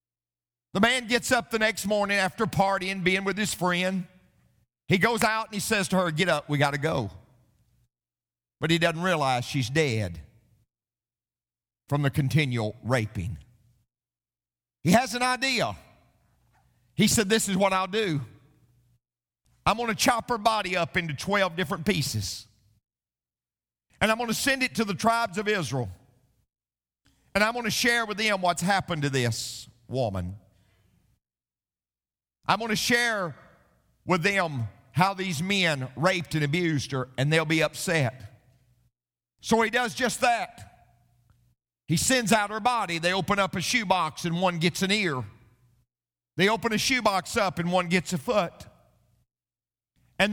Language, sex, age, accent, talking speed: English, male, 50-69, American, 155 wpm